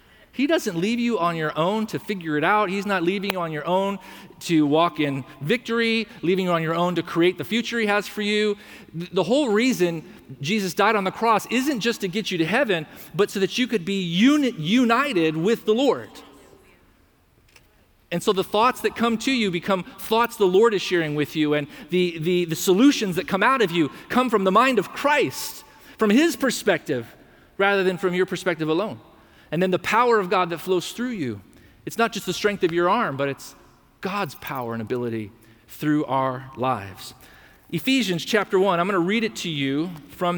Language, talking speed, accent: English, 205 wpm, American